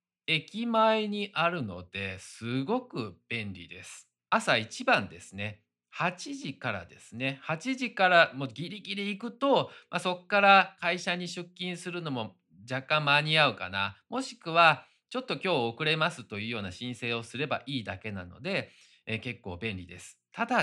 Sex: male